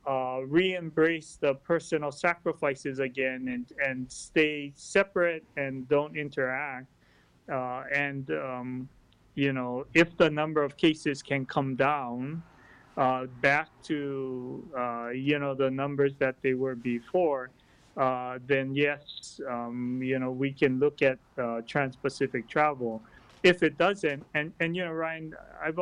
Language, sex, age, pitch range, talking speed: English, male, 30-49, 130-155 Hz, 140 wpm